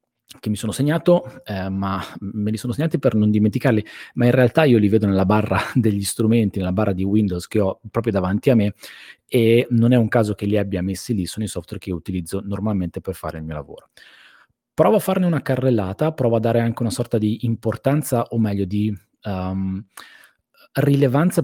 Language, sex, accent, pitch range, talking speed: Italian, male, native, 100-120 Hz, 200 wpm